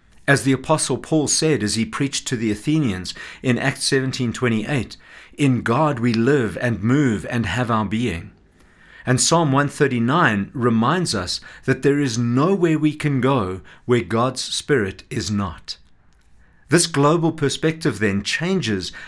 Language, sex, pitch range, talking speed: English, male, 105-145 Hz, 145 wpm